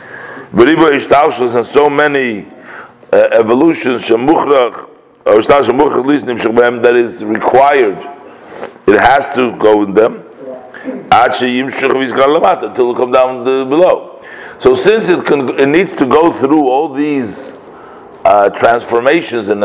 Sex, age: male, 50-69